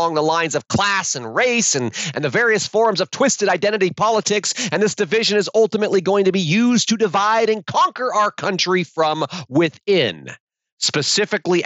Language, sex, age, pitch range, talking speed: English, male, 40-59, 140-215 Hz, 170 wpm